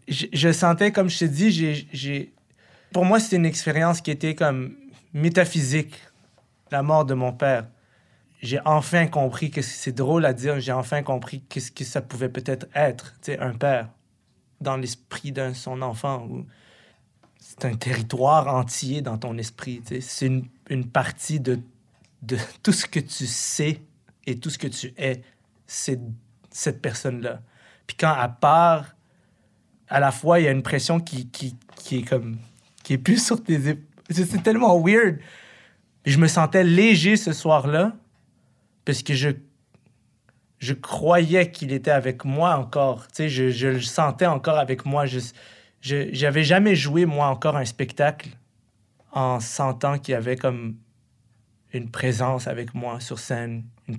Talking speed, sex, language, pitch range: 165 wpm, male, French, 125-155 Hz